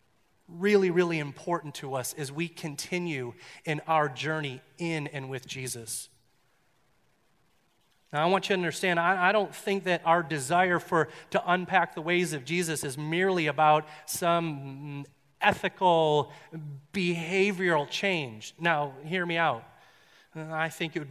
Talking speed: 140 wpm